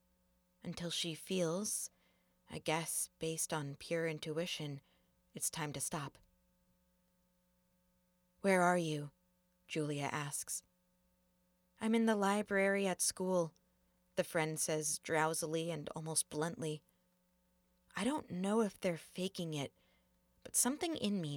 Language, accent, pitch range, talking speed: English, American, 110-185 Hz, 120 wpm